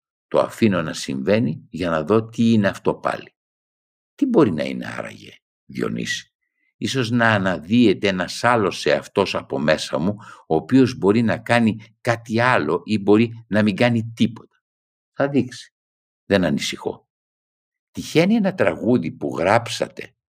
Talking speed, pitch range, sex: 145 wpm, 70-115 Hz, male